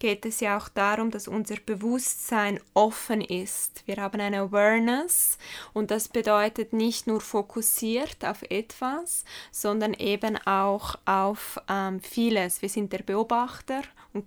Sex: female